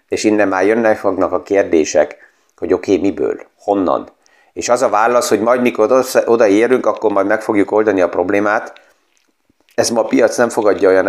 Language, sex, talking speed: Hungarian, male, 185 wpm